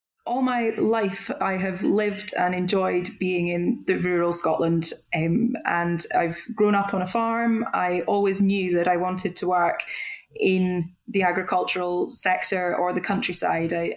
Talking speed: 160 wpm